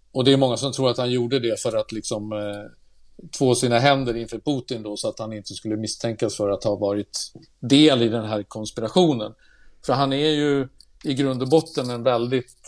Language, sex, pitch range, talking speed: Swedish, male, 110-135 Hz, 215 wpm